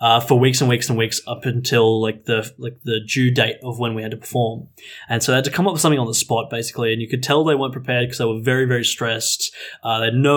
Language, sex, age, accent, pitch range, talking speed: English, male, 10-29, Australian, 115-135 Hz, 295 wpm